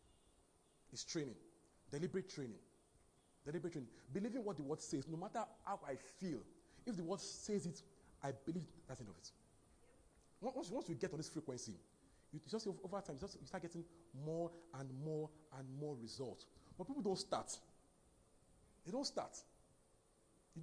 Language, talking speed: English, 165 wpm